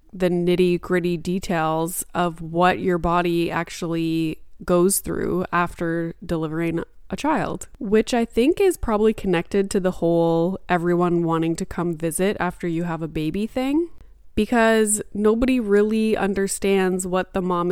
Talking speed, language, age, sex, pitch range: 140 wpm, English, 20-39, female, 170-210 Hz